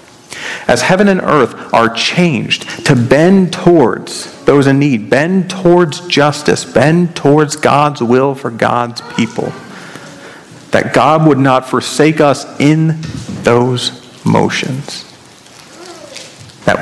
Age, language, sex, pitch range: 40-59, English, male, 125-165 Hz